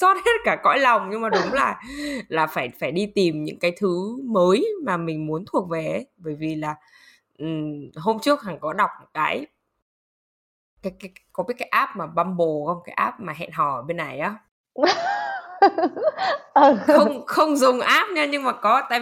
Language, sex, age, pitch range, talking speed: Vietnamese, female, 20-39, 175-260 Hz, 190 wpm